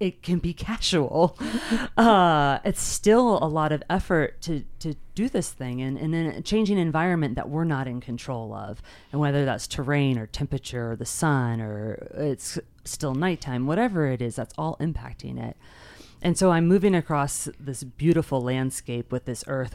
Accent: American